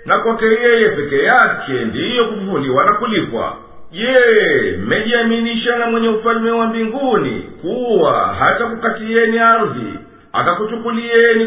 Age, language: 50-69, English